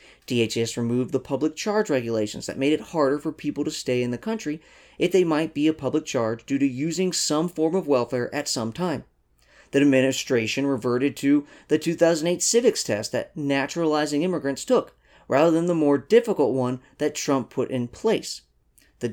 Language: English